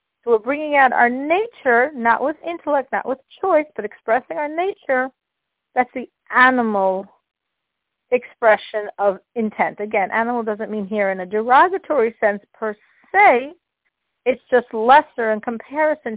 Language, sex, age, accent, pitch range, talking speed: English, female, 40-59, American, 220-305 Hz, 140 wpm